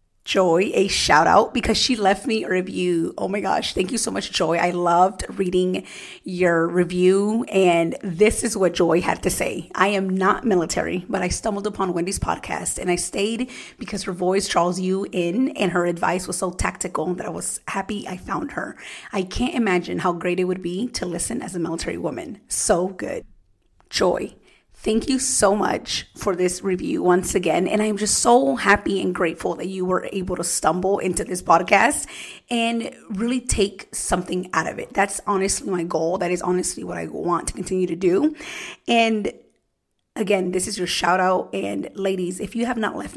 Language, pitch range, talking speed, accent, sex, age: English, 180-210 Hz, 195 wpm, American, female, 30-49